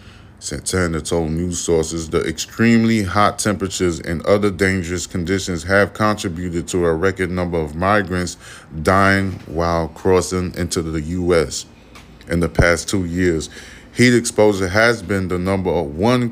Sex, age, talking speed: male, 30-49, 140 wpm